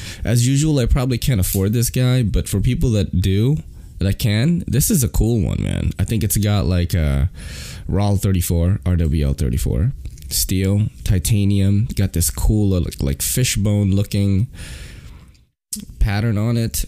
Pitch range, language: 85-115 Hz, English